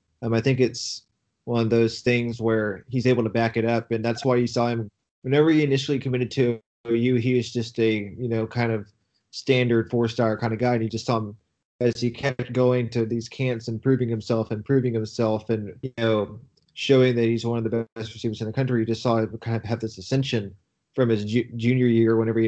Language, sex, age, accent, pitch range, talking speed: English, male, 20-39, American, 115-125 Hz, 235 wpm